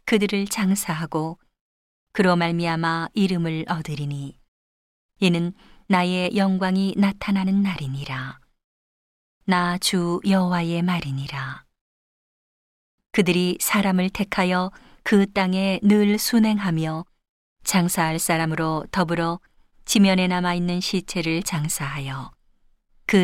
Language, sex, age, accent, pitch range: Korean, female, 40-59, native, 165-195 Hz